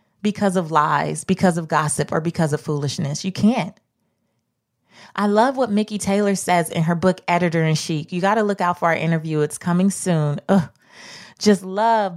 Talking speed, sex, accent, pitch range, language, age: 180 wpm, female, American, 170-235 Hz, English, 30-49